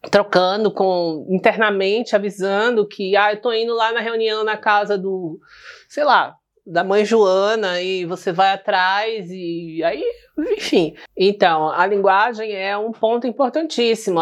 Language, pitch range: Portuguese, 185-240 Hz